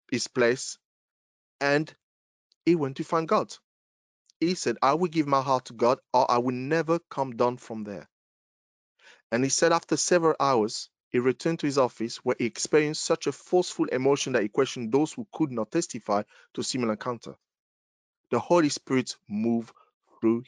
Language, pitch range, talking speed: English, 115-155 Hz, 175 wpm